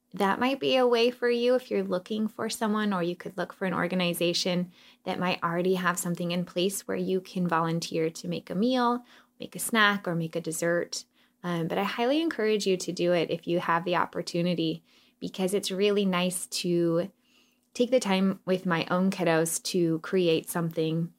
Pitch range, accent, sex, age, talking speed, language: 170-235 Hz, American, female, 20-39, 200 wpm, English